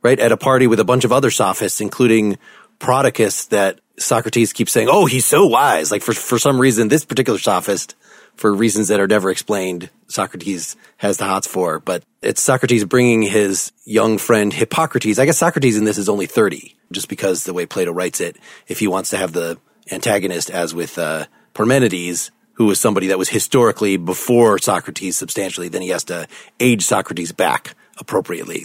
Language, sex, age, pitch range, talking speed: English, male, 30-49, 100-130 Hz, 190 wpm